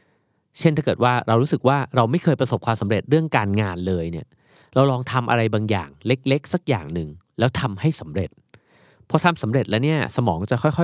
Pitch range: 95-130 Hz